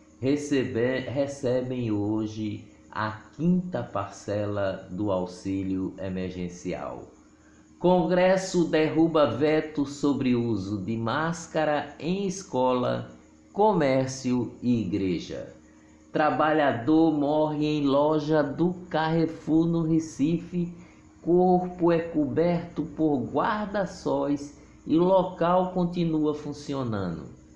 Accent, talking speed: Brazilian, 85 wpm